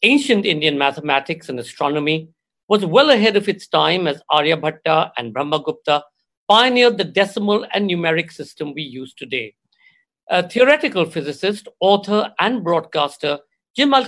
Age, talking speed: 60-79, 135 wpm